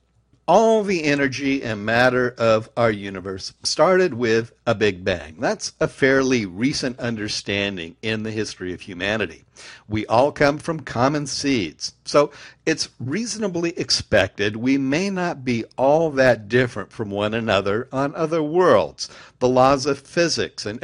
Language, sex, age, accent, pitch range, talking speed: English, male, 60-79, American, 110-150 Hz, 145 wpm